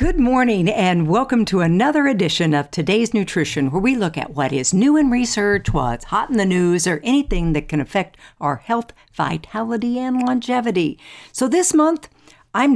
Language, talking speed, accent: English, 180 wpm, American